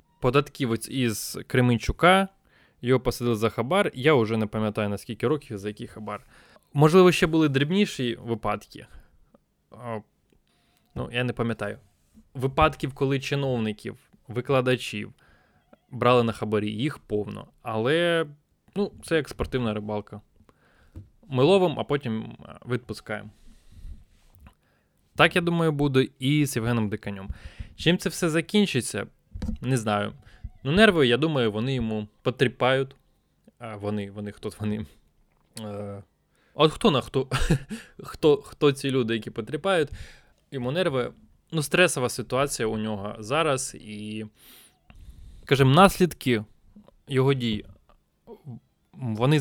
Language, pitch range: Ukrainian, 105-145 Hz